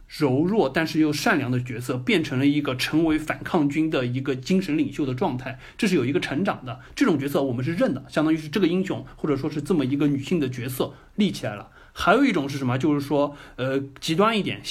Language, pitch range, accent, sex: Chinese, 135-195 Hz, native, male